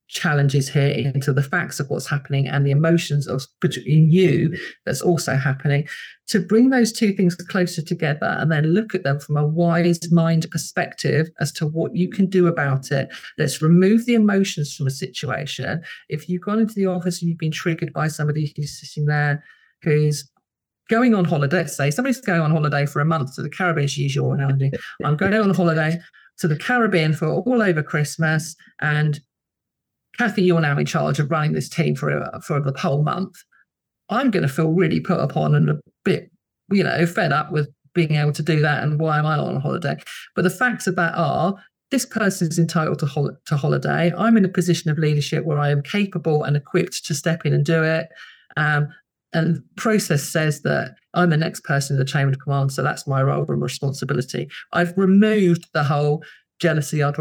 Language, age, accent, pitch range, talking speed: English, 40-59, British, 145-180 Hz, 210 wpm